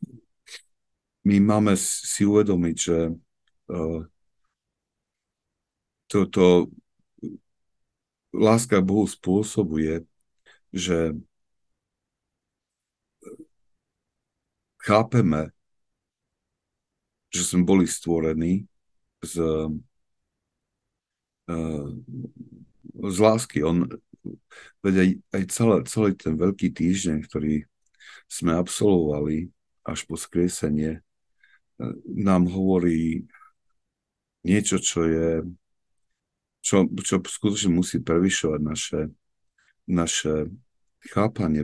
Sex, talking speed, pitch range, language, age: male, 60 wpm, 80-100 Hz, Slovak, 60-79